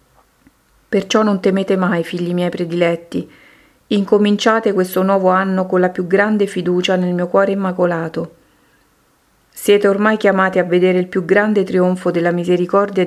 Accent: native